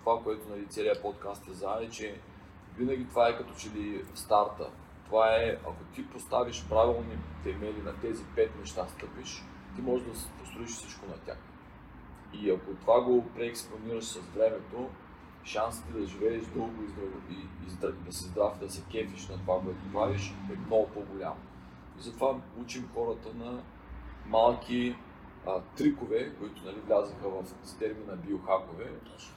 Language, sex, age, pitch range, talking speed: Bulgarian, male, 40-59, 95-115 Hz, 160 wpm